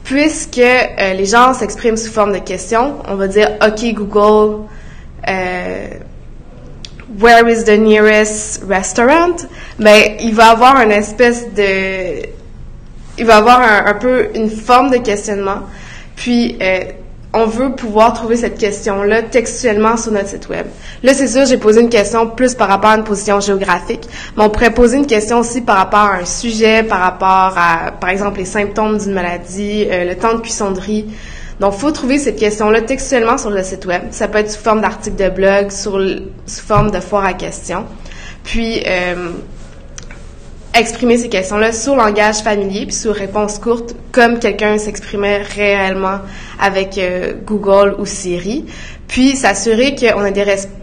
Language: French